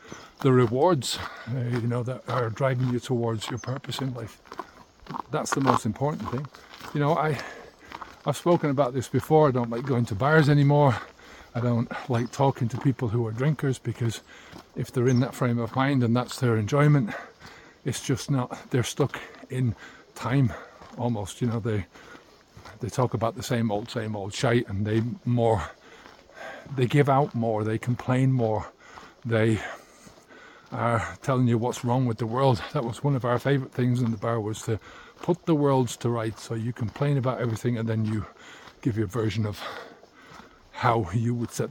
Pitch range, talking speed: 115-135 Hz, 185 wpm